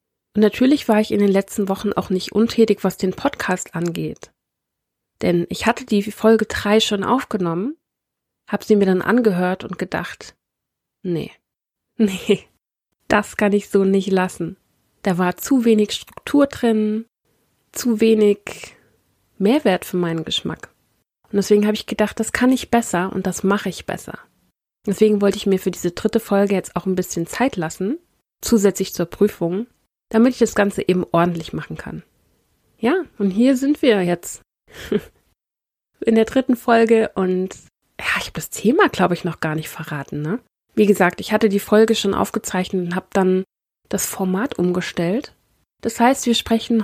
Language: German